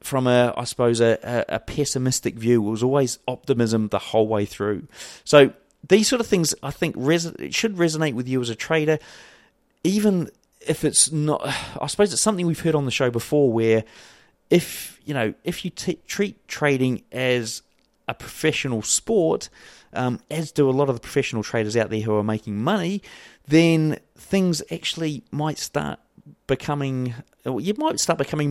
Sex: male